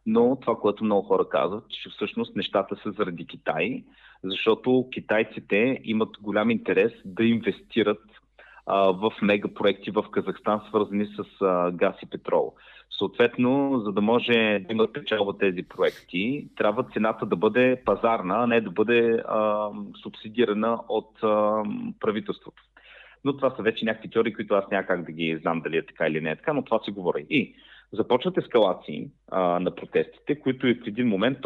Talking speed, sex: 170 wpm, male